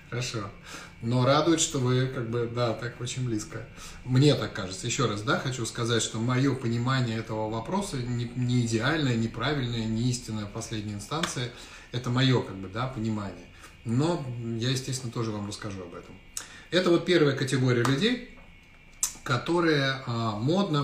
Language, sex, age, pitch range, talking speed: Russian, male, 30-49, 110-140 Hz, 160 wpm